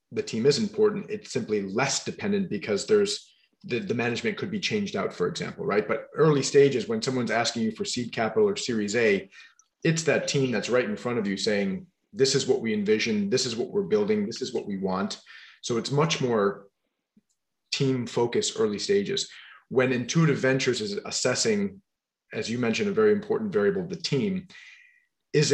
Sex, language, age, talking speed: male, English, 30-49, 195 wpm